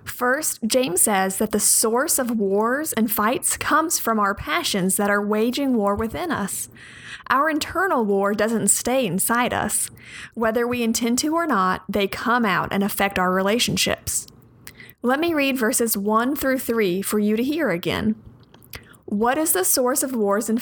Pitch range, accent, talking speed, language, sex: 200-255 Hz, American, 170 wpm, English, female